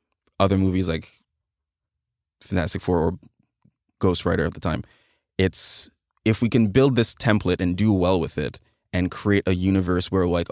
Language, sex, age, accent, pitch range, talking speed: English, male, 20-39, American, 85-100 Hz, 165 wpm